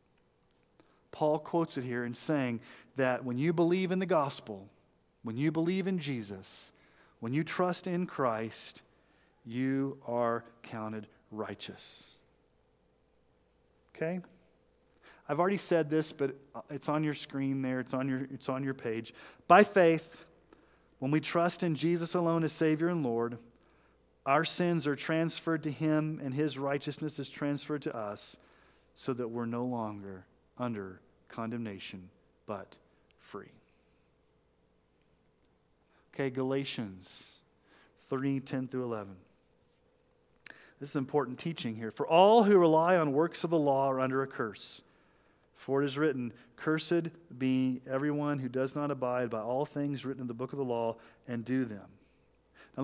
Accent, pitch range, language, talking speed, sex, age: American, 115-155 Hz, English, 145 wpm, male, 40-59